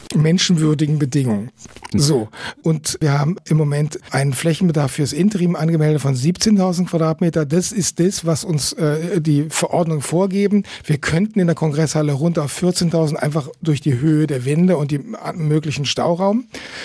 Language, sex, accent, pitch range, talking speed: German, male, German, 150-180 Hz, 155 wpm